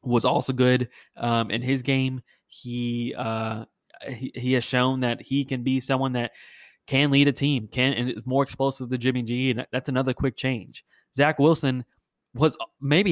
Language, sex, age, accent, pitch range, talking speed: English, male, 20-39, American, 115-130 Hz, 185 wpm